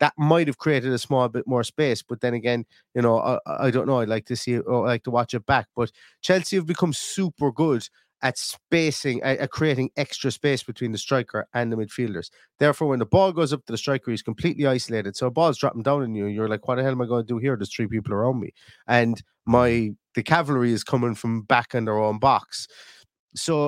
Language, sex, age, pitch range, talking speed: English, male, 30-49, 120-150 Hz, 245 wpm